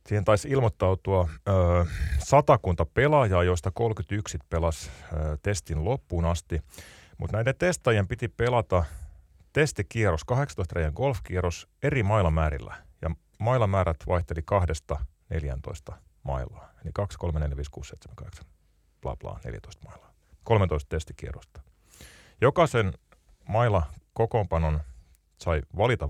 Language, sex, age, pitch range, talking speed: Finnish, male, 30-49, 75-100 Hz, 110 wpm